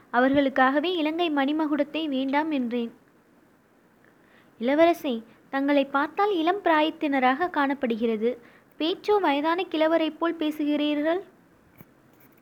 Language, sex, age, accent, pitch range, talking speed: Tamil, female, 20-39, native, 265-320 Hz, 75 wpm